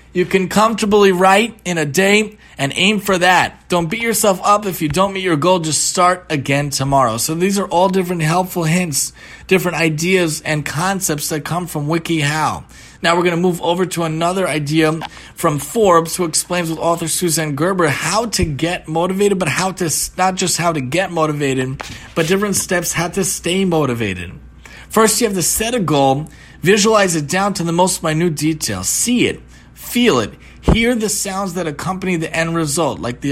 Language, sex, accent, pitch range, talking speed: English, male, American, 155-195 Hz, 190 wpm